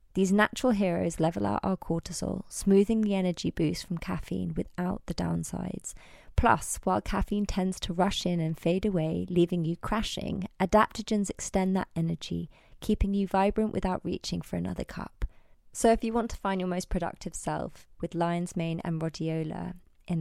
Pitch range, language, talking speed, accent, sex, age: 165-200 Hz, English, 170 wpm, British, female, 20-39